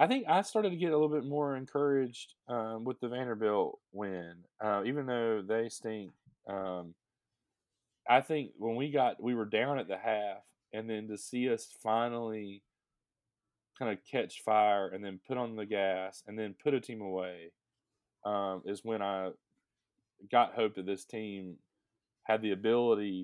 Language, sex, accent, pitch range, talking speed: English, male, American, 100-120 Hz, 175 wpm